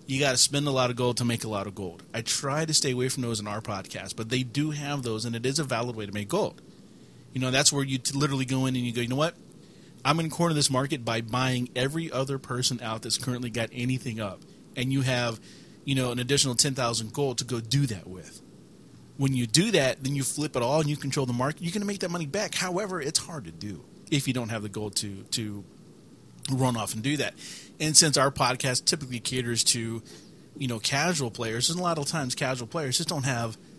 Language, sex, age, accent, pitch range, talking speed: English, male, 30-49, American, 115-145 Hz, 260 wpm